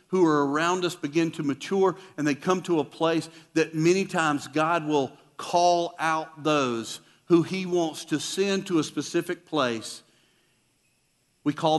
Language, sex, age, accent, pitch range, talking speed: English, male, 50-69, American, 150-190 Hz, 165 wpm